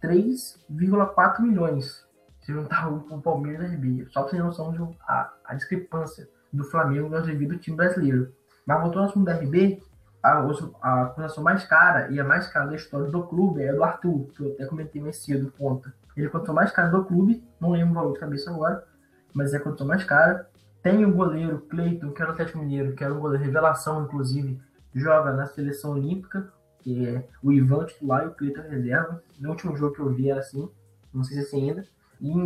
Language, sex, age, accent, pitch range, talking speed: Portuguese, male, 10-29, Brazilian, 140-175 Hz, 215 wpm